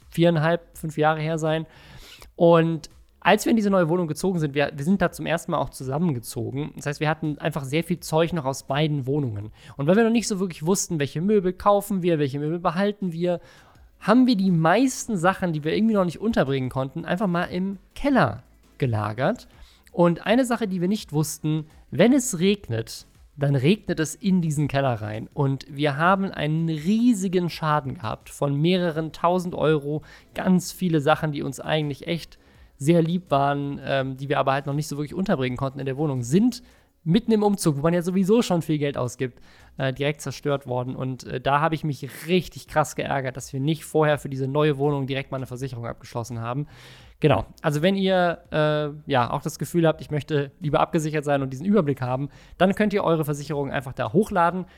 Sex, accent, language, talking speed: male, German, German, 205 wpm